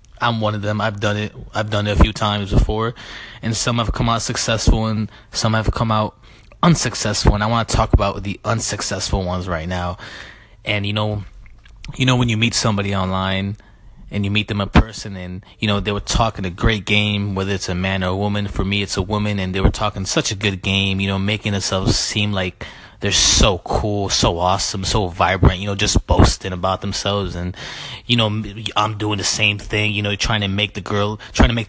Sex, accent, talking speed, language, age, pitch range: male, American, 225 wpm, English, 20-39, 100-110 Hz